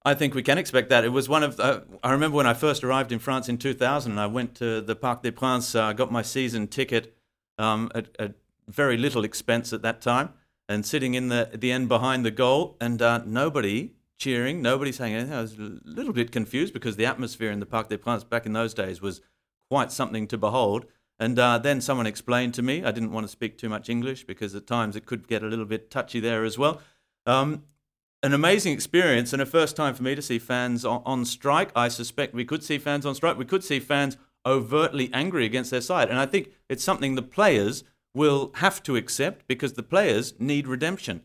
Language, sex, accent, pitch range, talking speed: English, male, Australian, 115-135 Hz, 235 wpm